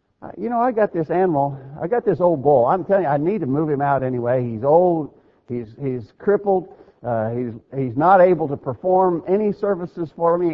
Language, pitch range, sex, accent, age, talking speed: English, 135-180 Hz, male, American, 50-69, 210 wpm